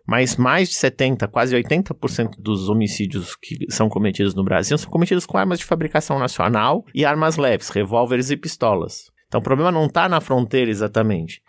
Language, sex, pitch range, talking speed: Portuguese, male, 110-155 Hz, 180 wpm